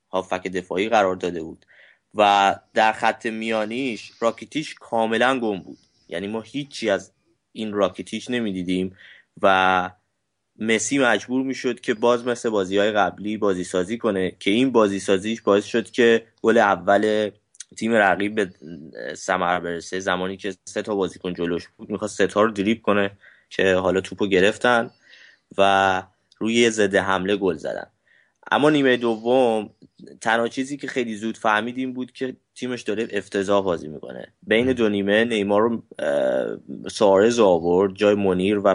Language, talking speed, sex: Persian, 150 wpm, male